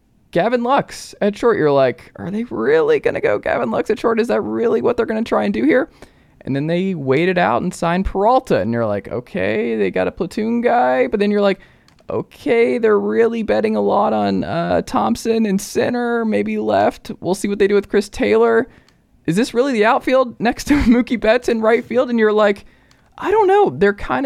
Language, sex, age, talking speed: English, male, 20-39, 220 wpm